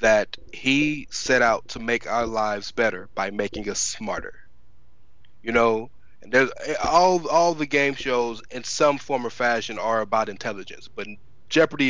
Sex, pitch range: male, 110-140 Hz